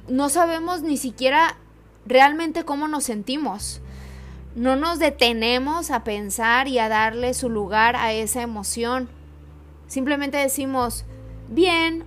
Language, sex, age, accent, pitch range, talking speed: Spanish, female, 20-39, Mexican, 195-265 Hz, 120 wpm